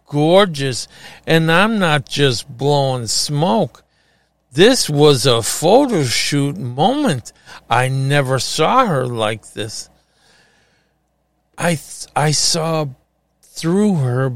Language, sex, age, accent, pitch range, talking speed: English, male, 50-69, American, 125-160 Hz, 105 wpm